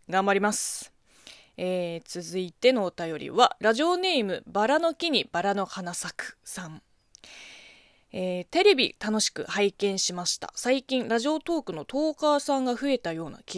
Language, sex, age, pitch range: Japanese, female, 20-39, 175-240 Hz